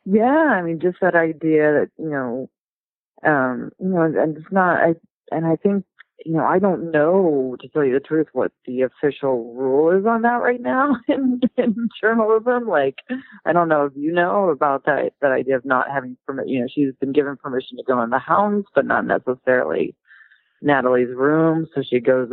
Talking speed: 200 wpm